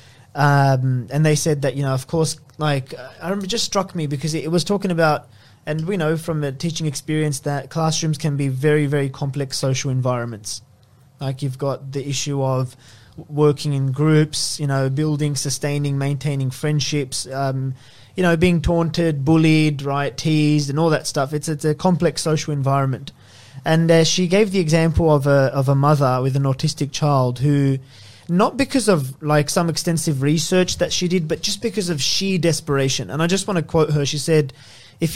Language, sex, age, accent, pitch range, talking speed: English, male, 20-39, Australian, 135-160 Hz, 195 wpm